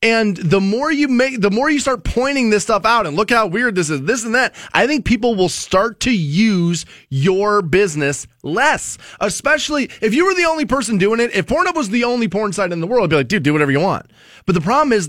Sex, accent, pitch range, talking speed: male, American, 145-230 Hz, 250 wpm